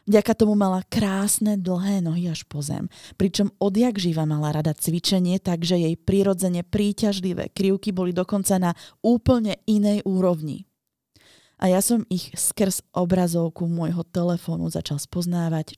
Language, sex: Slovak, female